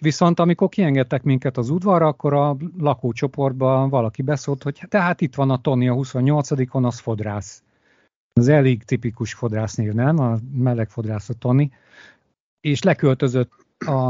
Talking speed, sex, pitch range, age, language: 145 wpm, male, 120-150 Hz, 50-69, Hungarian